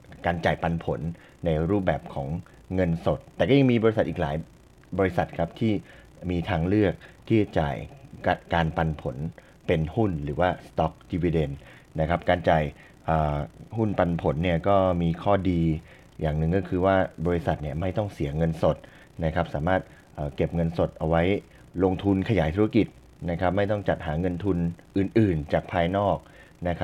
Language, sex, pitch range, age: Thai, male, 80-95 Hz, 20-39